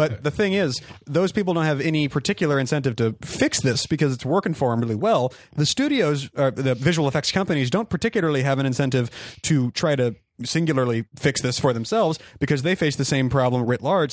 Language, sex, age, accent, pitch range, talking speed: English, male, 30-49, American, 125-160 Hz, 210 wpm